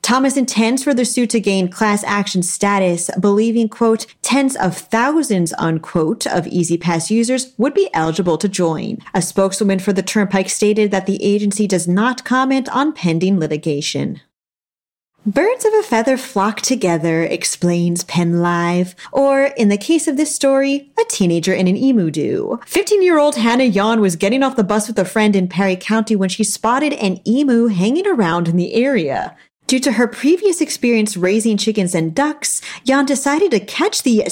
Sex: female